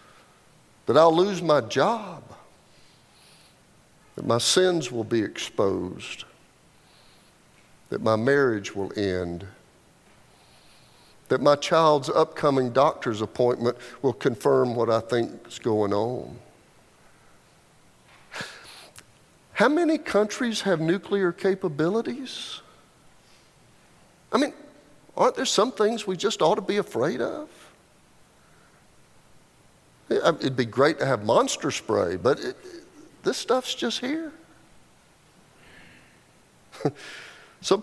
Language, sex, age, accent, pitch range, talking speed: English, male, 50-69, American, 140-195 Hz, 100 wpm